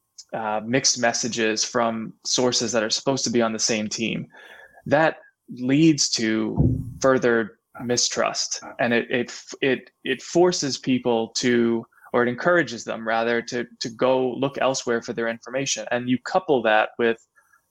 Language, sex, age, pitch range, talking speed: English, male, 20-39, 115-130 Hz, 155 wpm